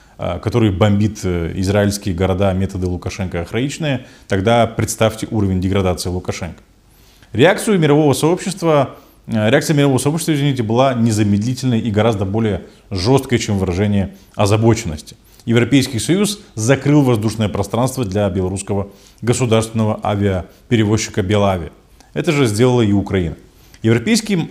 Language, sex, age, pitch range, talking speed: Russian, male, 20-39, 100-135 Hz, 100 wpm